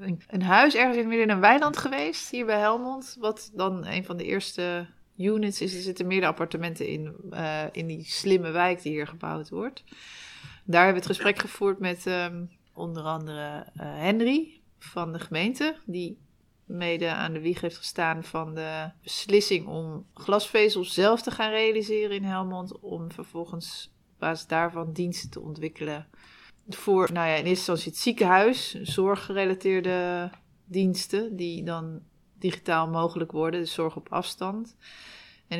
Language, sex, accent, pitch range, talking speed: Dutch, female, Dutch, 165-195 Hz, 160 wpm